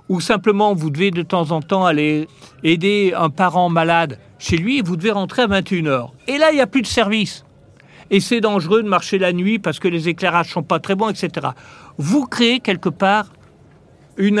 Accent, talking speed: French, 210 wpm